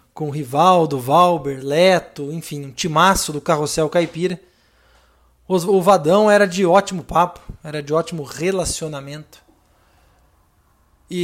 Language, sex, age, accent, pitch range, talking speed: Portuguese, male, 20-39, Brazilian, 150-195 Hz, 115 wpm